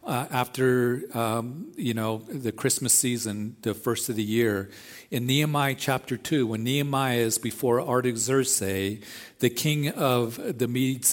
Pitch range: 115-140 Hz